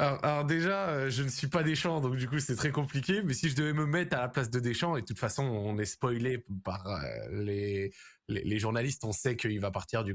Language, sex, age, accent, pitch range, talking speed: French, male, 20-39, French, 120-160 Hz, 250 wpm